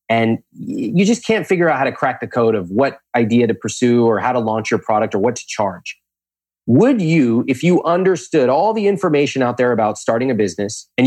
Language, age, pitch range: English, 30-49, 105-160 Hz